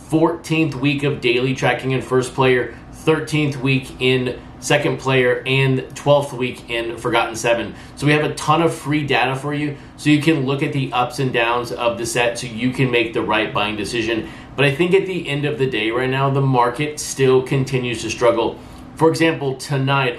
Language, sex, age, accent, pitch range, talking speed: English, male, 30-49, American, 120-140 Hz, 205 wpm